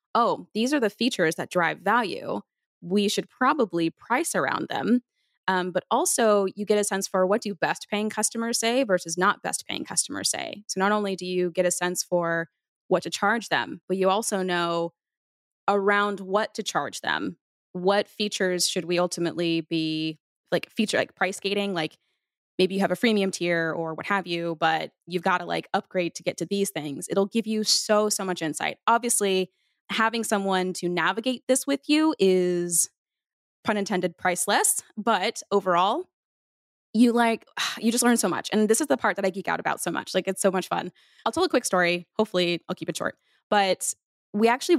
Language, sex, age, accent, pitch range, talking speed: English, female, 20-39, American, 180-220 Hz, 195 wpm